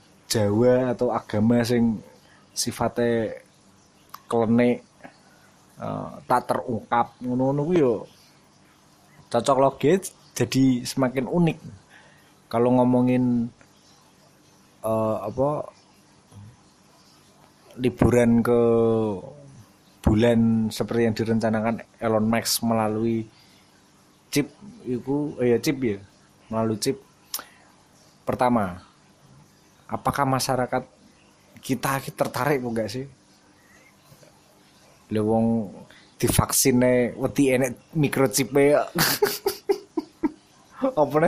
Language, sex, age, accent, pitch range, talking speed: Indonesian, male, 20-39, native, 115-140 Hz, 70 wpm